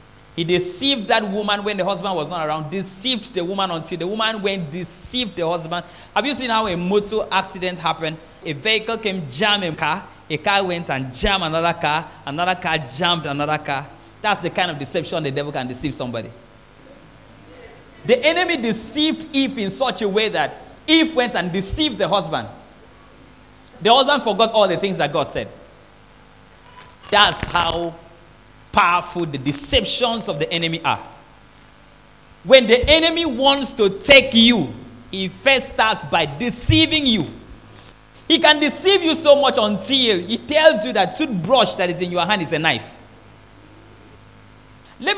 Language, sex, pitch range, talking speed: English, male, 155-240 Hz, 165 wpm